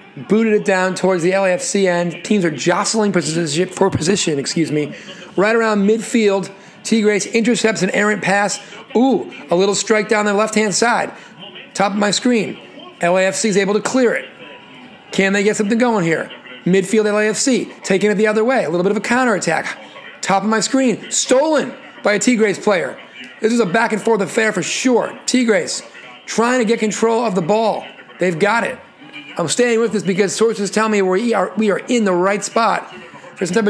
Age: 40-59